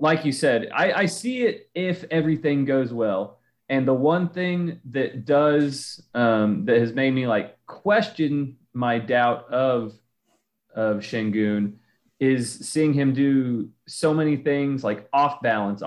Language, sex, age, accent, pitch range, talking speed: English, male, 30-49, American, 120-145 Hz, 150 wpm